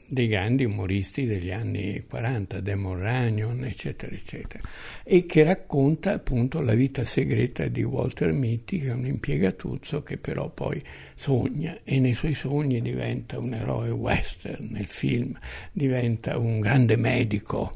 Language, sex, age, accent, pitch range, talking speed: Italian, male, 60-79, native, 115-140 Hz, 140 wpm